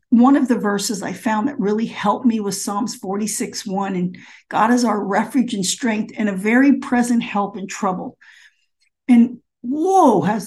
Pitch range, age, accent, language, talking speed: 205-250 Hz, 50-69, American, English, 180 wpm